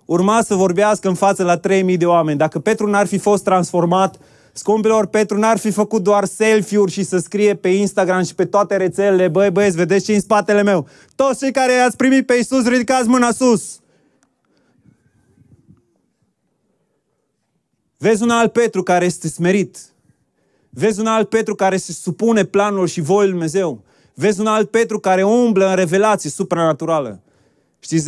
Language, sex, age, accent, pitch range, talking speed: Romanian, male, 20-39, native, 140-200 Hz, 165 wpm